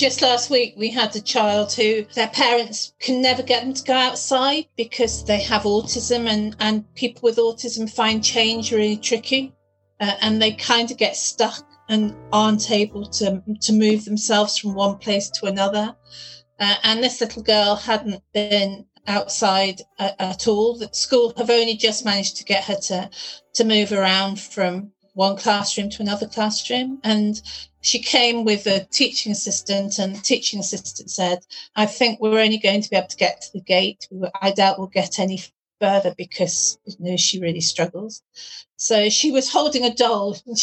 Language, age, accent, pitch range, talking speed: English, 40-59, British, 195-230 Hz, 185 wpm